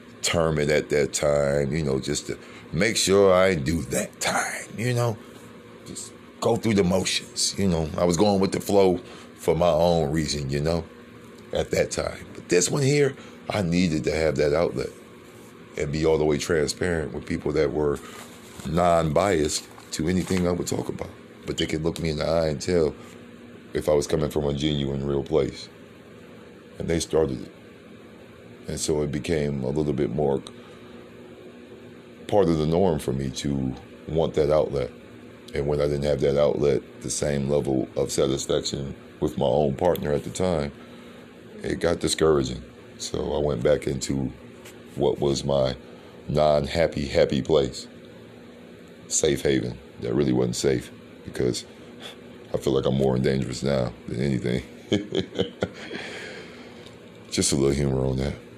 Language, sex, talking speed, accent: English, male, 165 wpm, American